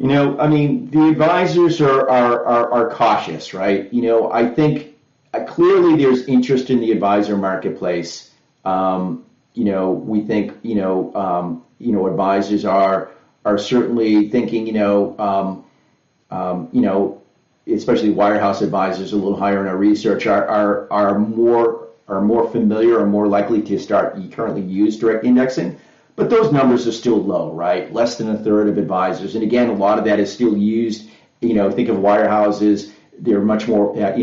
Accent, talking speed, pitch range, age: American, 175 wpm, 100-115 Hz, 40-59